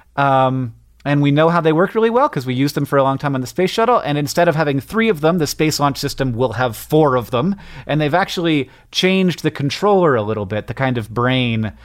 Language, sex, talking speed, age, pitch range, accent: English, male, 255 wpm, 30-49, 125-175 Hz, American